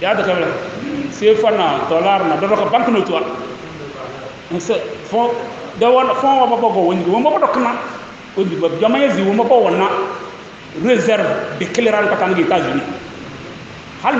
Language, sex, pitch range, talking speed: English, male, 200-265 Hz, 100 wpm